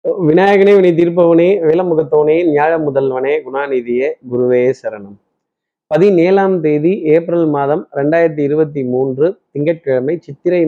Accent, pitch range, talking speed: native, 130-170 Hz, 100 wpm